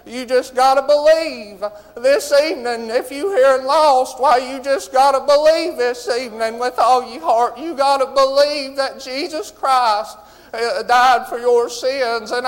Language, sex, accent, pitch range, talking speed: English, male, American, 200-250 Hz, 175 wpm